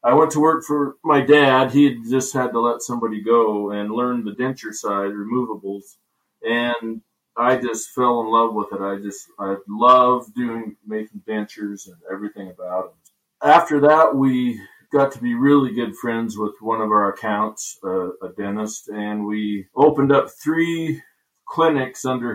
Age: 40-59